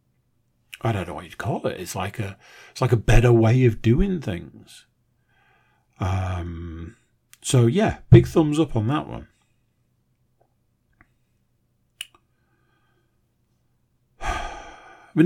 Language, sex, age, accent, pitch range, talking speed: English, male, 50-69, British, 105-130 Hz, 115 wpm